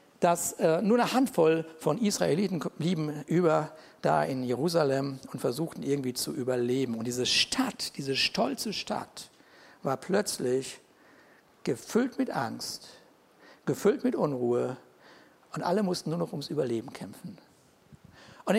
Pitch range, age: 140-210 Hz, 60-79